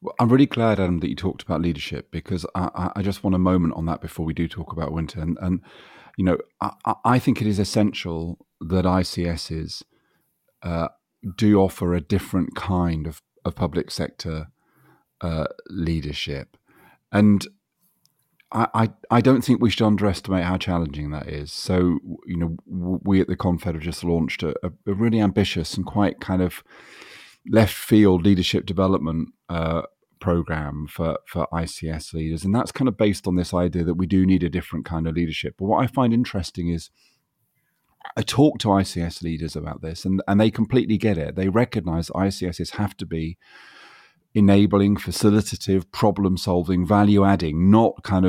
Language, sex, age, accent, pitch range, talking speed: English, male, 40-59, British, 85-105 Hz, 170 wpm